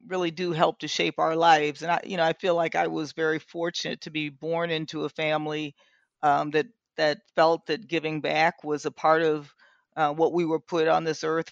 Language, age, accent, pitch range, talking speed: English, 40-59, American, 150-170 Hz, 225 wpm